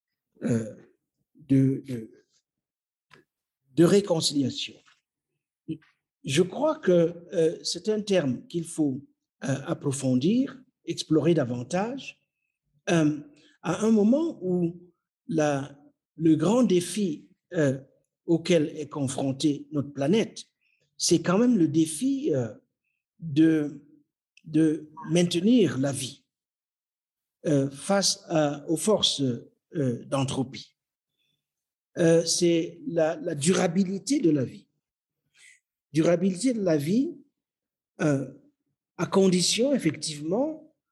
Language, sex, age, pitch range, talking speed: French, male, 60-79, 150-190 Hz, 95 wpm